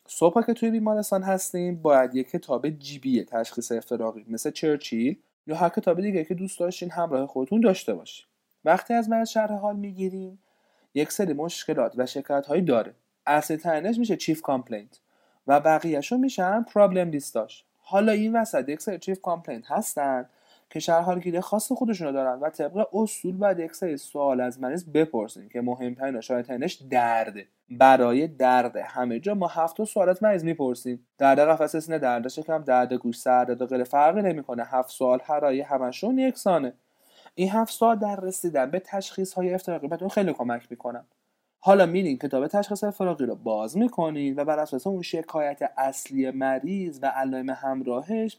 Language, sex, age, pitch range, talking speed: Persian, male, 30-49, 130-190 Hz, 165 wpm